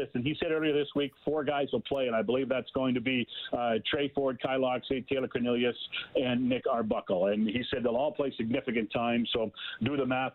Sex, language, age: male, English, 40-59